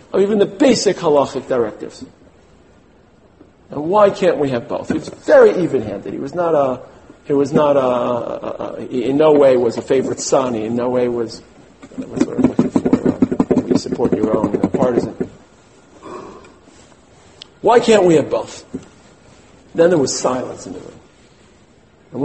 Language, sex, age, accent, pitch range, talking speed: English, male, 50-69, American, 130-205 Hz, 165 wpm